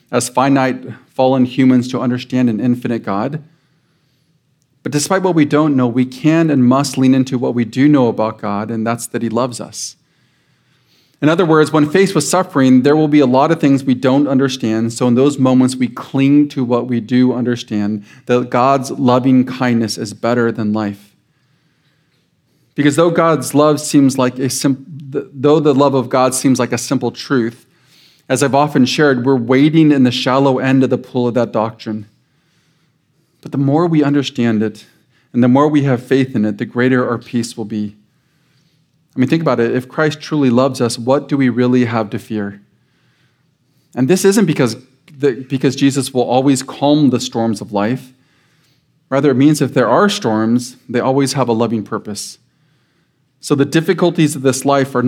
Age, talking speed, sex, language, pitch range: 40-59, 190 wpm, male, English, 120-145 Hz